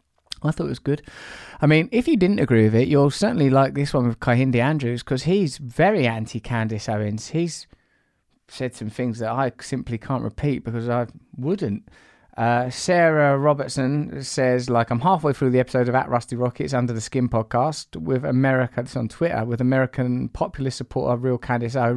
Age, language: 20-39, English